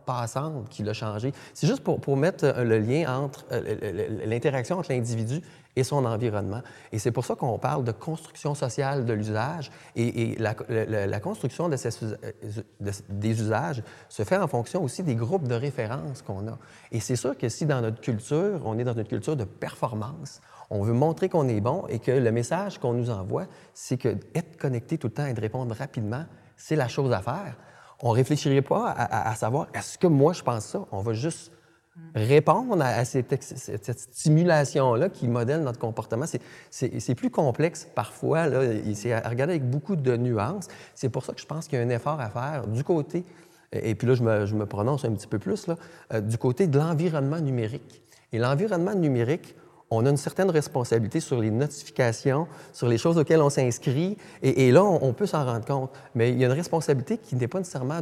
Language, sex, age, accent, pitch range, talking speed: French, male, 30-49, Canadian, 115-155 Hz, 215 wpm